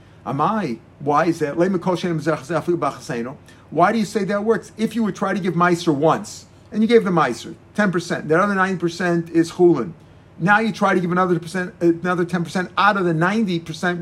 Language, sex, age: English, male, 50-69